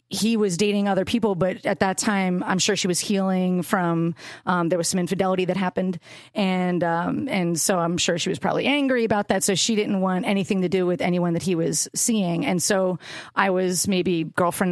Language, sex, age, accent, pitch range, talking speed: English, female, 30-49, American, 180-225 Hz, 215 wpm